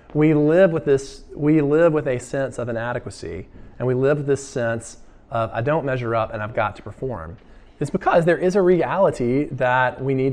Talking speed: 210 wpm